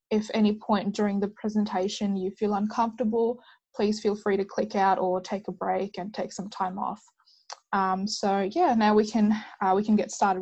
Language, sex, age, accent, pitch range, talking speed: Indonesian, female, 20-39, Australian, 195-225 Hz, 200 wpm